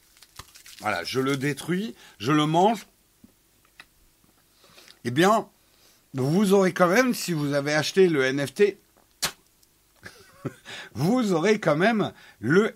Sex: male